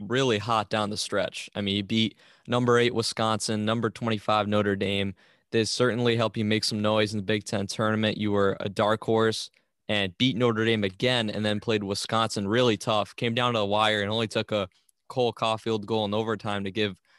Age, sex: 20-39, male